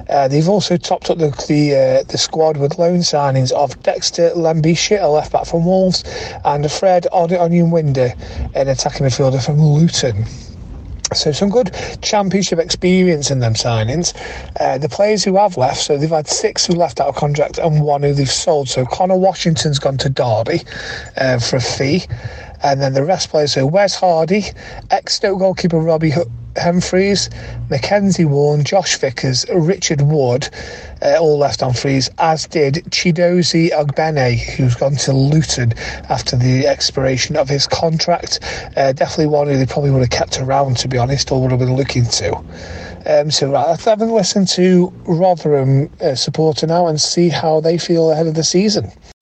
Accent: British